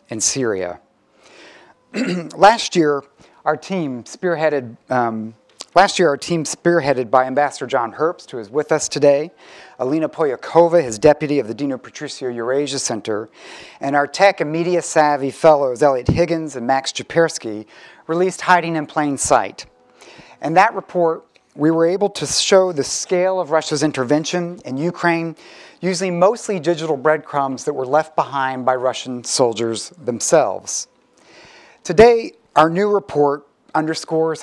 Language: English